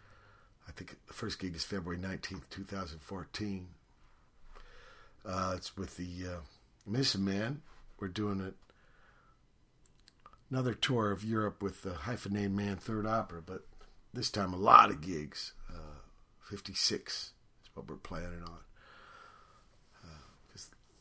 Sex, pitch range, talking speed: male, 95-120 Hz, 125 wpm